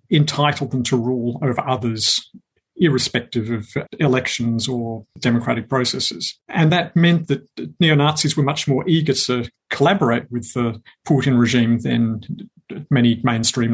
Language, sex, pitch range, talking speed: English, male, 120-150 Hz, 130 wpm